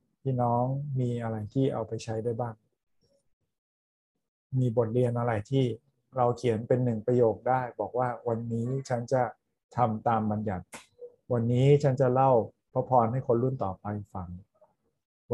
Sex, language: male, Thai